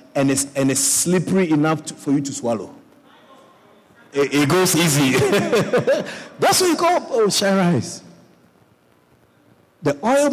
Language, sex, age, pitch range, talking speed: English, male, 50-69, 135-190 Hz, 120 wpm